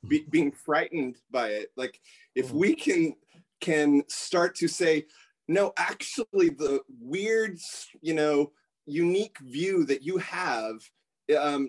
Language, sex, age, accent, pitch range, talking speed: English, male, 30-49, American, 140-200 Hz, 125 wpm